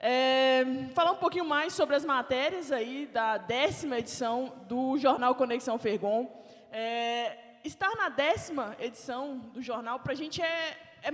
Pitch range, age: 225-275 Hz, 20-39